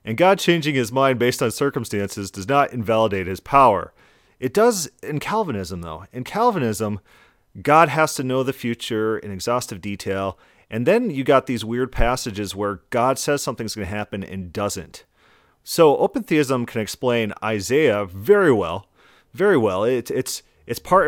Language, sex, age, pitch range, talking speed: English, male, 30-49, 100-145 Hz, 170 wpm